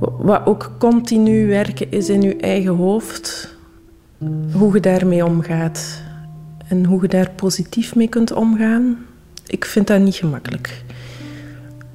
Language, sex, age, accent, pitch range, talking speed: Dutch, female, 20-39, Dutch, 180-220 Hz, 130 wpm